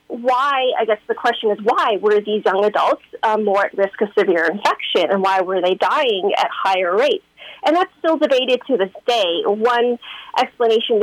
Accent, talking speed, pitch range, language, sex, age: American, 190 wpm, 195-255 Hz, English, female, 30-49